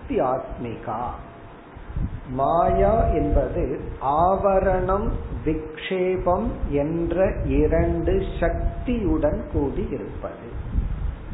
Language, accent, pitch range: Tamil, native, 135-180 Hz